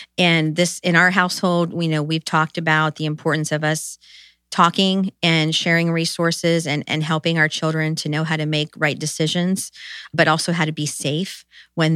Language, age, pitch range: English, 40-59, 150-165 Hz